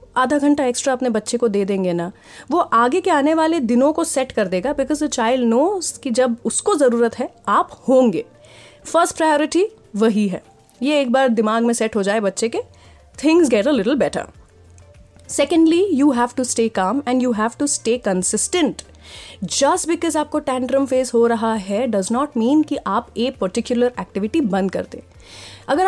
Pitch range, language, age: 220-305 Hz, Hindi, 30-49